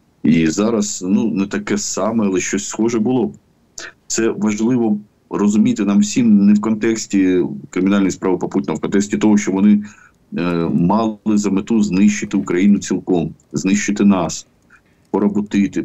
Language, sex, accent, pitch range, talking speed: Ukrainian, male, native, 95-115 Hz, 140 wpm